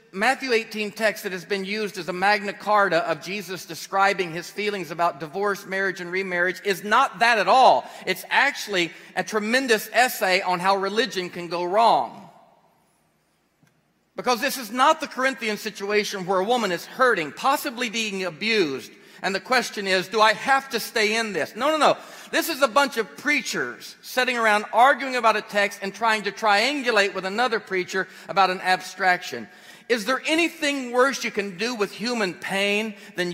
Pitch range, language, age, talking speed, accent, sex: 190-240 Hz, English, 40-59, 180 wpm, American, male